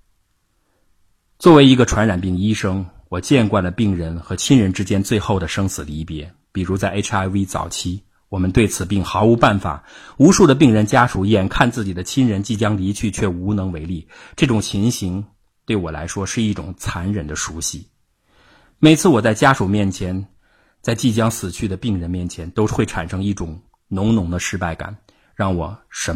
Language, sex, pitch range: Chinese, male, 90-110 Hz